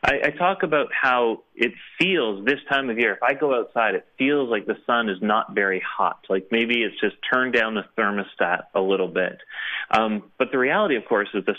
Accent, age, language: American, 30-49, English